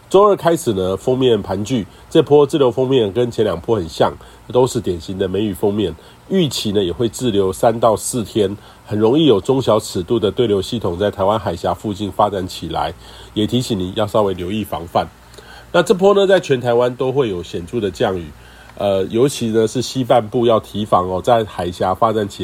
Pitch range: 100-125 Hz